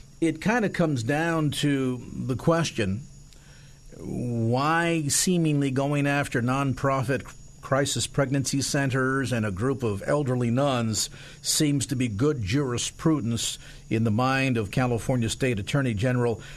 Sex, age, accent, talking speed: male, 50-69, American, 125 wpm